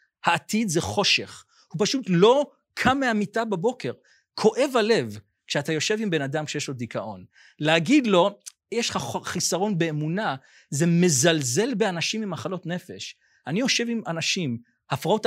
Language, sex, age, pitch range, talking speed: Hebrew, male, 40-59, 145-215 Hz, 140 wpm